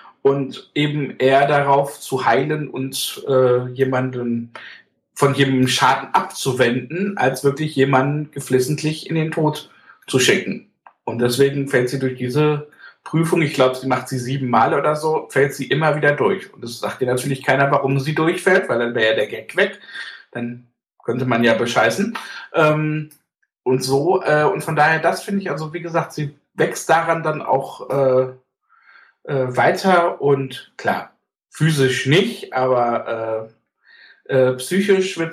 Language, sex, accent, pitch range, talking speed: German, male, German, 130-155 Hz, 155 wpm